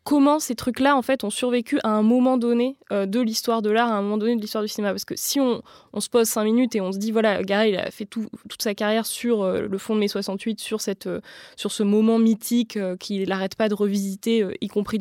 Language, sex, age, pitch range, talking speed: French, female, 20-39, 200-235 Hz, 280 wpm